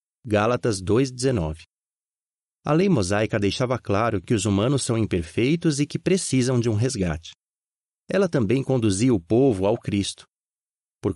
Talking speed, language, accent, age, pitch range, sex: 140 wpm, Portuguese, Brazilian, 30-49, 105-145 Hz, male